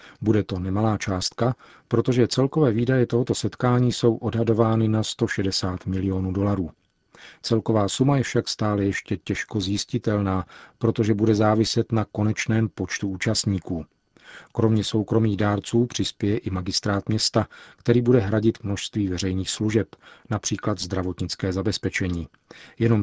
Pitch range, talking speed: 95-115 Hz, 120 wpm